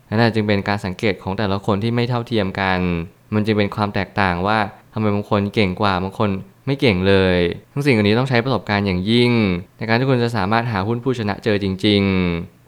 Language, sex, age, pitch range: Thai, male, 20-39, 100-120 Hz